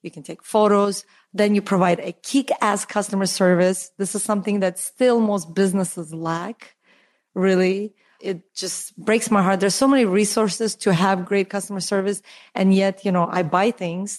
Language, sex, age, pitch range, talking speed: English, female, 30-49, 185-230 Hz, 175 wpm